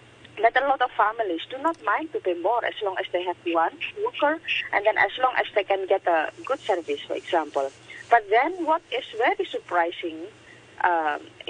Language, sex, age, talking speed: English, female, 30-49, 200 wpm